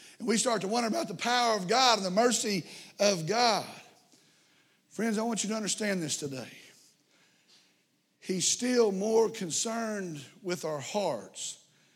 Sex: male